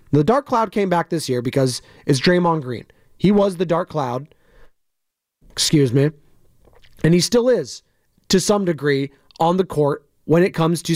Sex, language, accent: male, English, American